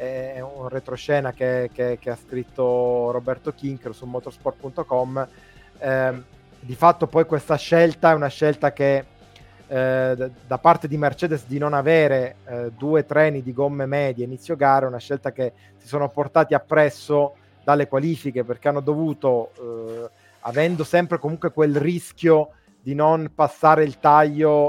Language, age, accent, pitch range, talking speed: Italian, 20-39, native, 125-150 Hz, 150 wpm